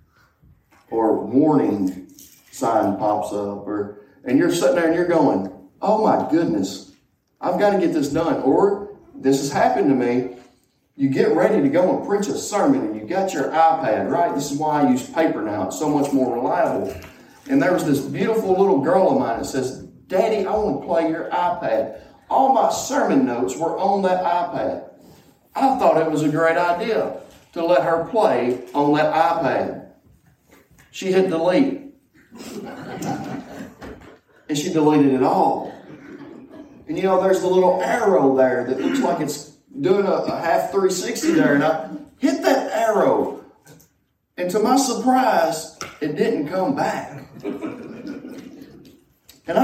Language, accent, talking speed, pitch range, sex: English, American, 165 wpm, 140-215 Hz, male